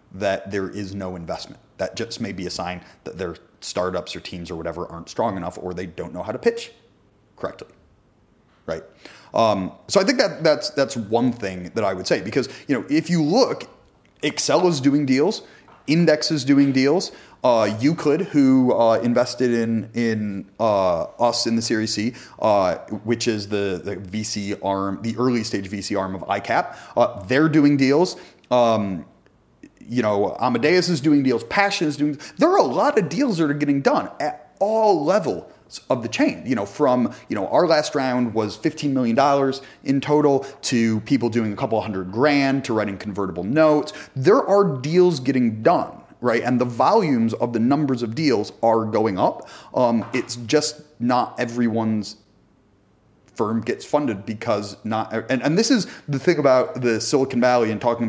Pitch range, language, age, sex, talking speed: 105-145 Hz, English, 30-49, male, 185 wpm